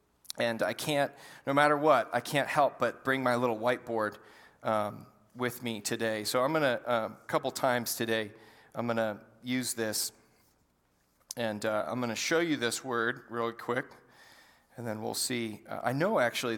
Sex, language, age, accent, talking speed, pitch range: male, English, 40-59, American, 180 wpm, 110-140 Hz